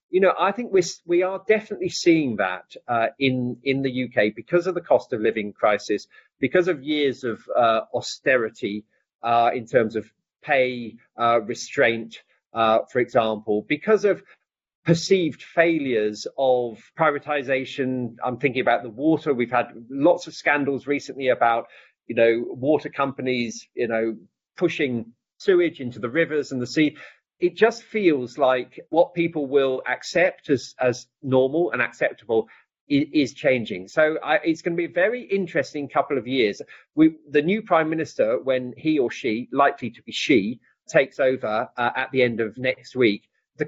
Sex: male